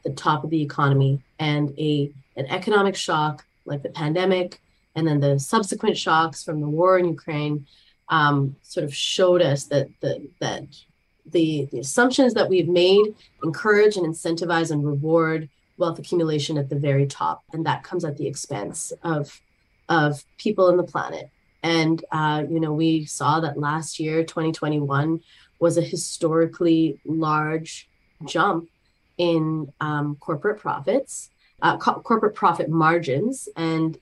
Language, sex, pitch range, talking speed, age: English, female, 145-170 Hz, 150 wpm, 30-49